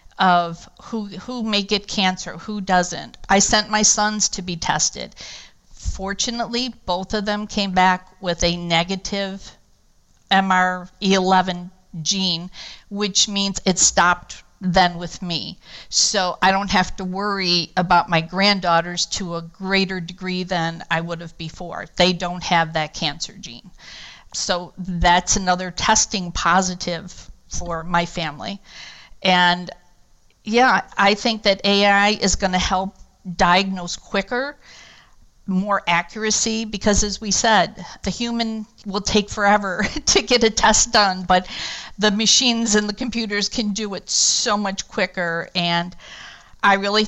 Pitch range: 175-205 Hz